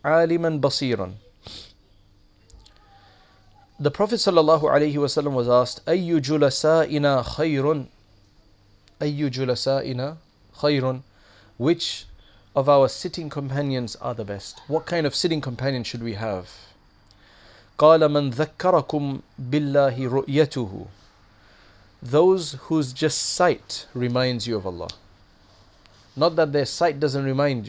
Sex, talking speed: male, 100 wpm